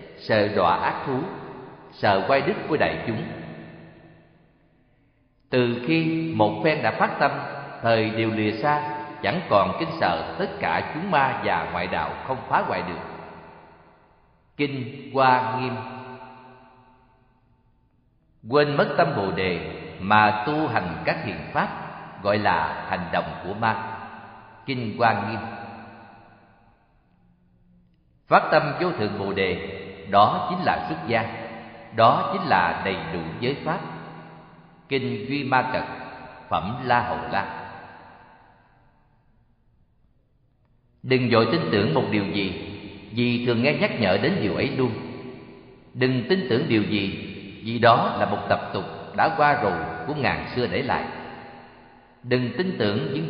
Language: Vietnamese